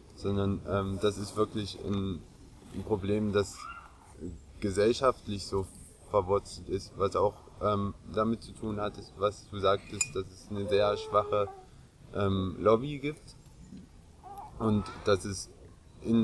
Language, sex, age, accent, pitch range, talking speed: German, male, 20-39, German, 100-110 Hz, 130 wpm